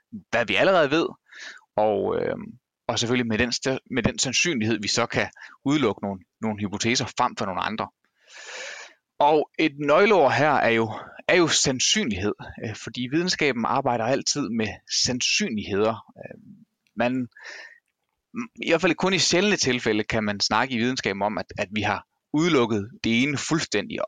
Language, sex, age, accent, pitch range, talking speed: Danish, male, 30-49, native, 115-155 Hz, 140 wpm